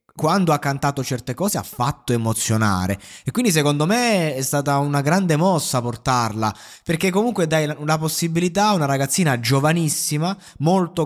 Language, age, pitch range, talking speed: Italian, 20-39, 130-175 Hz, 150 wpm